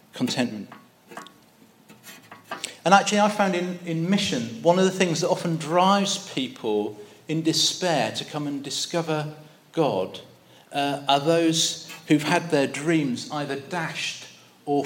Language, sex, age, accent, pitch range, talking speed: English, male, 40-59, British, 130-175 Hz, 135 wpm